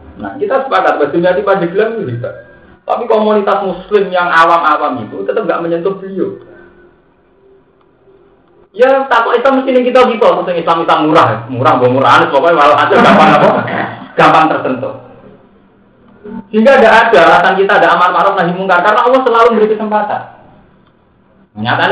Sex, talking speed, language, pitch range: male, 145 wpm, Indonesian, 135-215 Hz